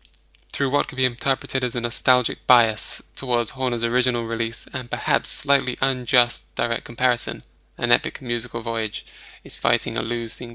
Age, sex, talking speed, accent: 10-29, male, 155 wpm, British